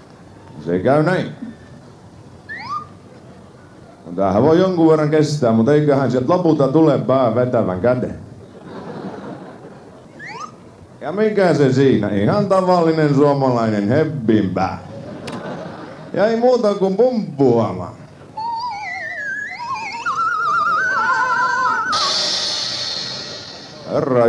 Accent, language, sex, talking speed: native, Finnish, male, 75 wpm